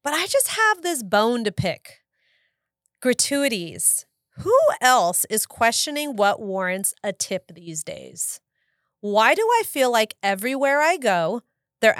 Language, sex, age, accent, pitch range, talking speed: English, female, 30-49, American, 185-240 Hz, 140 wpm